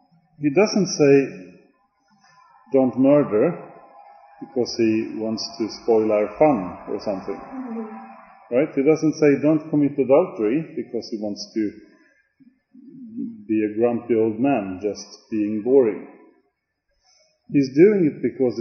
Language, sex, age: English, male, 40-59